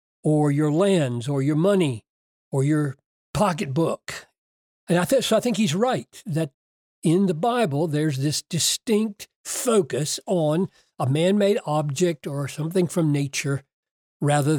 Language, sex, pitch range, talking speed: English, male, 135-190 Hz, 140 wpm